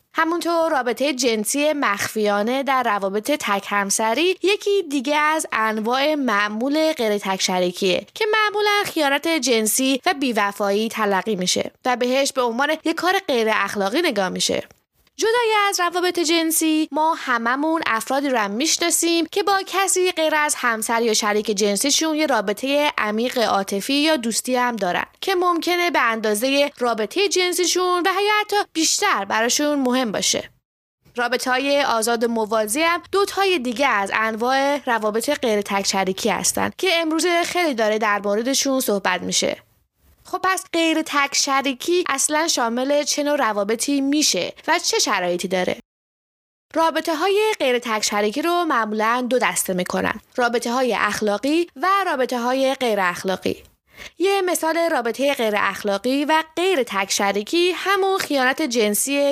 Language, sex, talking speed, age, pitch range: English, female, 140 wpm, 20-39, 220-330 Hz